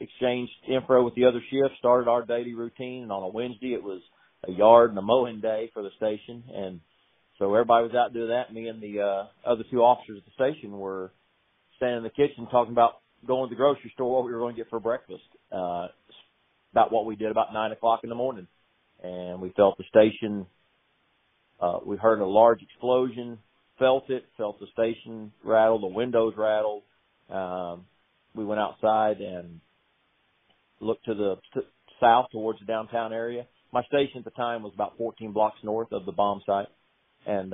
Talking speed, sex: 195 wpm, male